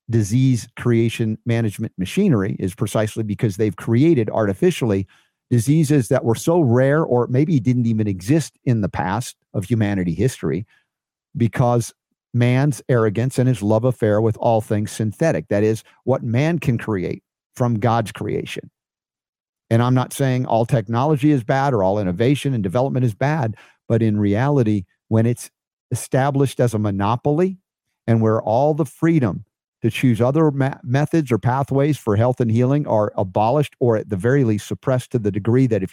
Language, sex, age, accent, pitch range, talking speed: English, male, 50-69, American, 105-135 Hz, 165 wpm